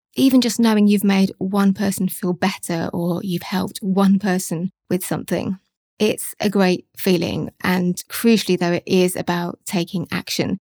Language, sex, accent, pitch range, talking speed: English, female, British, 180-205 Hz, 155 wpm